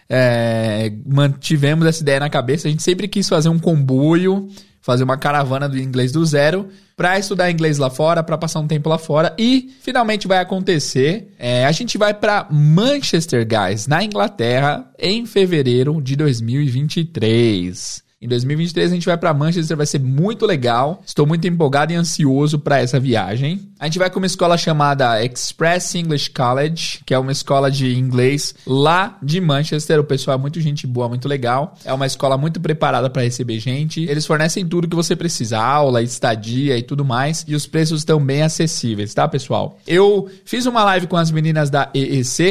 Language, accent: Portuguese, Brazilian